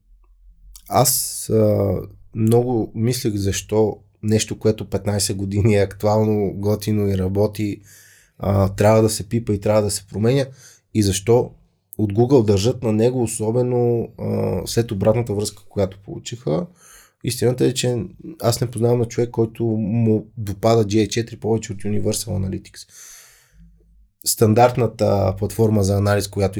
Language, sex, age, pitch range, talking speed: Bulgarian, male, 20-39, 100-120 Hz, 135 wpm